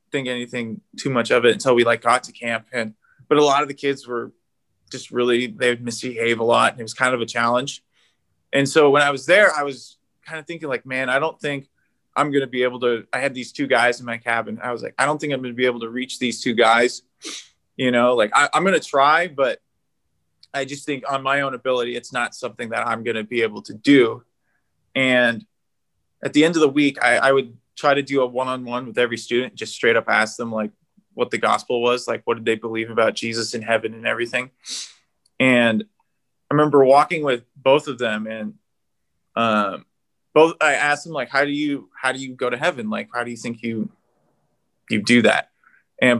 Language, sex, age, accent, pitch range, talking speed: English, male, 20-39, American, 120-140 Hz, 225 wpm